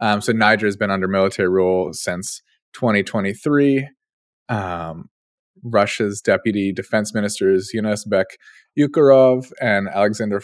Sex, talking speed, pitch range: male, 110 wpm, 95-110 Hz